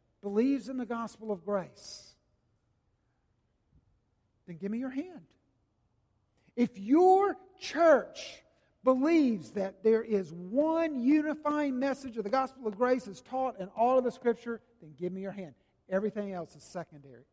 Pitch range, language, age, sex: 180-265 Hz, English, 50-69, male